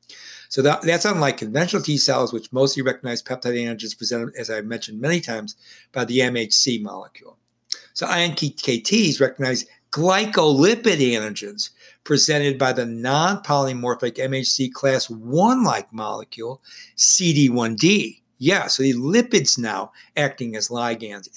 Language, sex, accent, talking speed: English, male, American, 120 wpm